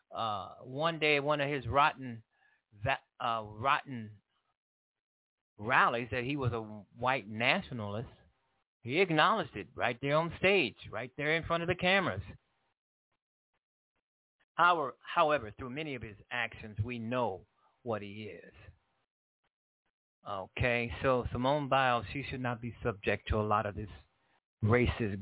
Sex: male